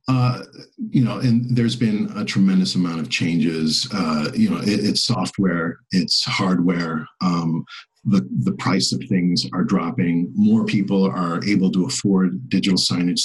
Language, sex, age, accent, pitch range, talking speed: English, male, 40-59, American, 95-125 Hz, 160 wpm